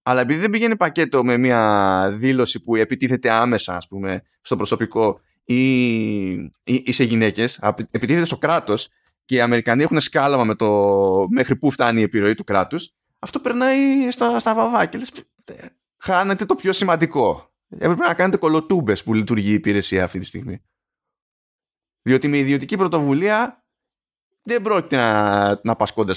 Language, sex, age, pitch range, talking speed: Greek, male, 20-39, 110-175 Hz, 145 wpm